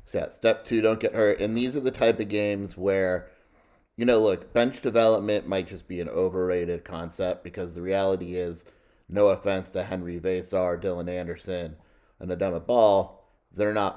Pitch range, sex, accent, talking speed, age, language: 90-100 Hz, male, American, 180 wpm, 30-49, English